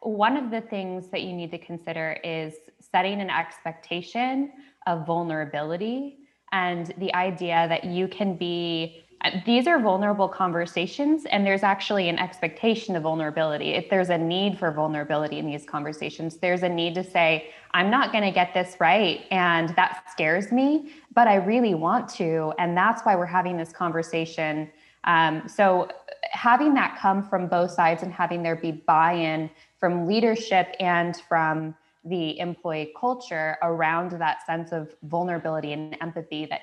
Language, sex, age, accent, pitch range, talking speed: English, female, 10-29, American, 160-190 Hz, 160 wpm